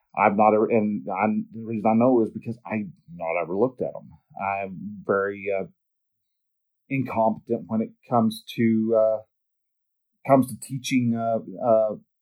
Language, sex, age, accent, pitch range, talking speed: English, male, 40-59, American, 110-145 Hz, 150 wpm